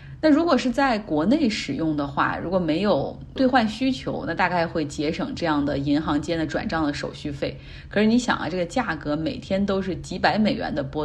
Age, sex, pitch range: 30-49, female, 155-225 Hz